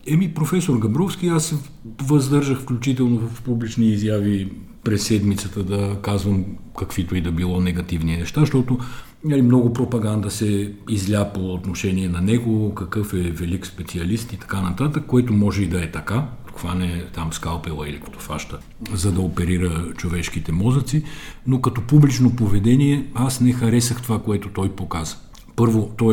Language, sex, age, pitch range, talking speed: Bulgarian, male, 50-69, 90-120 Hz, 155 wpm